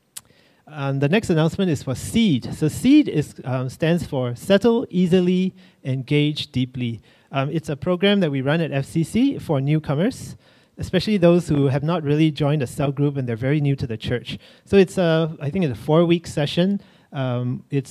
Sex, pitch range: male, 130-165 Hz